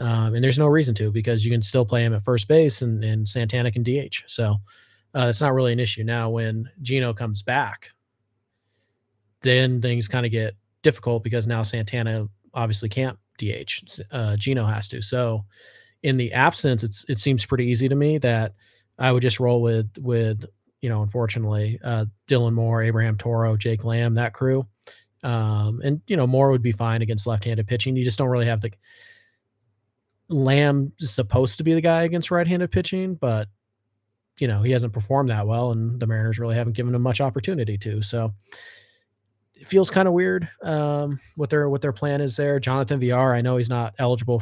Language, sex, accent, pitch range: English, male, American, 110-130 Hz